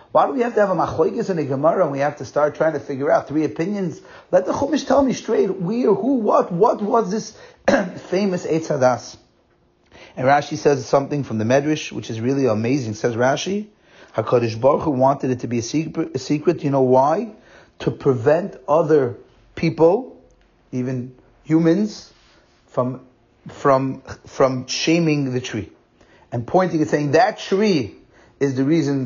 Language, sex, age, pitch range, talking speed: English, male, 30-49, 130-175 Hz, 175 wpm